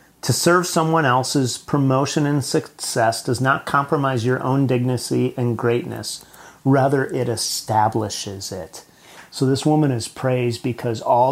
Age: 40-59